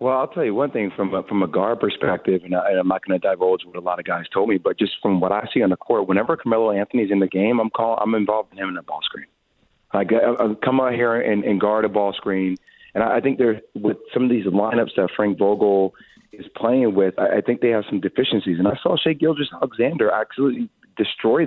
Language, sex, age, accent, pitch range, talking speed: English, male, 30-49, American, 100-115 Hz, 265 wpm